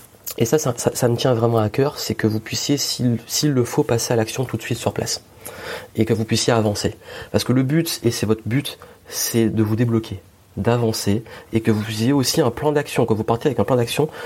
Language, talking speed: French, 250 wpm